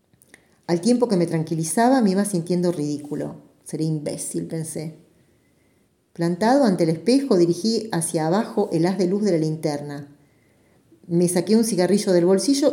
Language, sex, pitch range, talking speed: Spanish, female, 155-215 Hz, 150 wpm